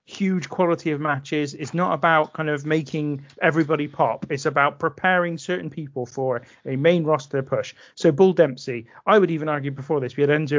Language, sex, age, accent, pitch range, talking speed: English, male, 40-59, British, 145-190 Hz, 195 wpm